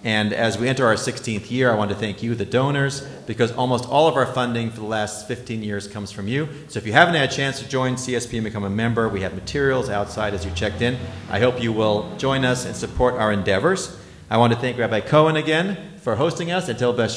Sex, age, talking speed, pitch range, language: male, 40-59, 250 wpm, 100-125 Hz, English